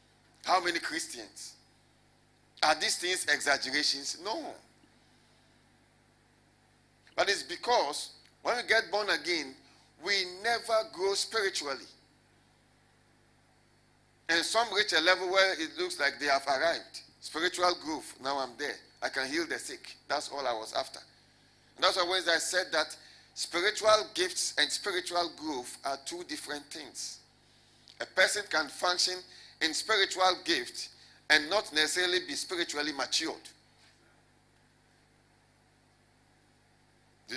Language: English